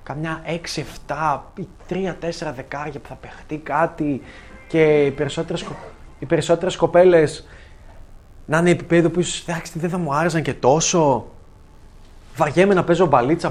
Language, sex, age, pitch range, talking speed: Greek, male, 20-39, 130-180 Hz, 120 wpm